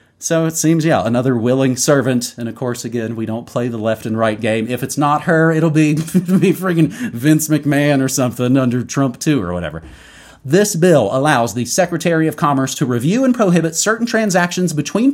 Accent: American